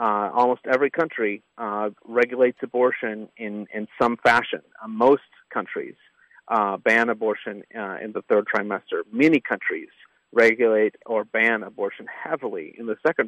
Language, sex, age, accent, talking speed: English, male, 40-59, American, 145 wpm